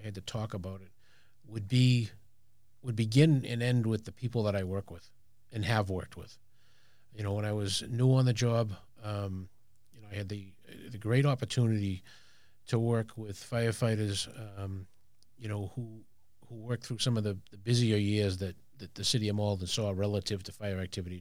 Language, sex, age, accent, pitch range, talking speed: English, male, 40-59, American, 100-120 Hz, 195 wpm